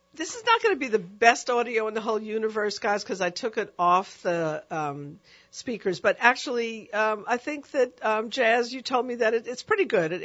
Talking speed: 230 wpm